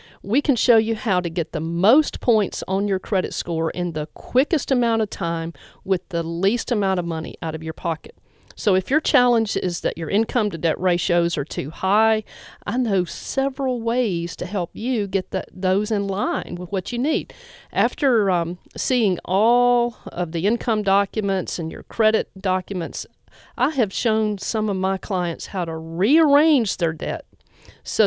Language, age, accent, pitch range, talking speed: English, 50-69, American, 180-250 Hz, 180 wpm